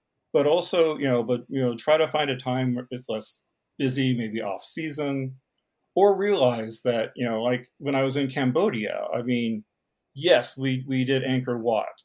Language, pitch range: English, 120-135 Hz